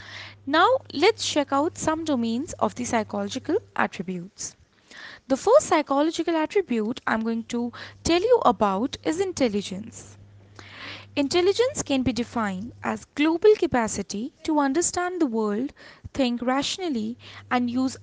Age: 20-39